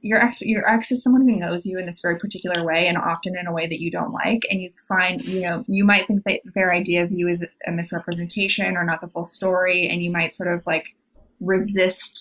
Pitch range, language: 175-230 Hz, English